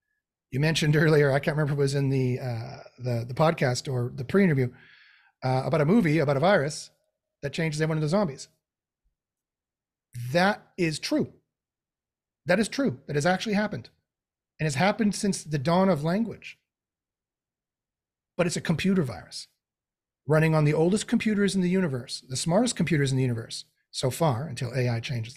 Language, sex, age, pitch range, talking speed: English, male, 40-59, 140-195 Hz, 170 wpm